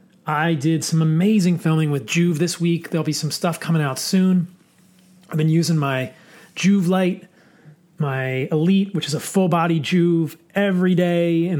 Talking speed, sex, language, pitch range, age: 165 wpm, male, English, 155-180 Hz, 30-49